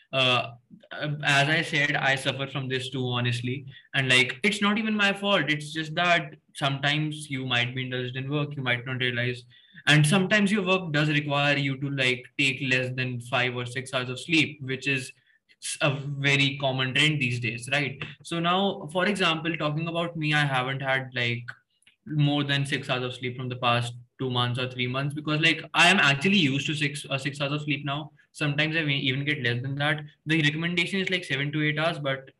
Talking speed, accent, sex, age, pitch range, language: 210 wpm, Indian, male, 20-39, 130-155 Hz, English